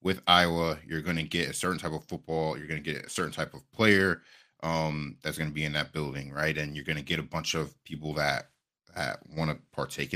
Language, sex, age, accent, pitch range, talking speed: English, male, 30-49, American, 75-85 Hz, 255 wpm